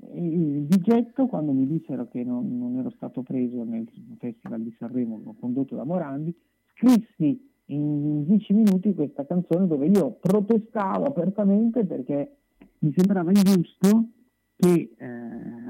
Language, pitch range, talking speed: Italian, 135-210 Hz, 130 wpm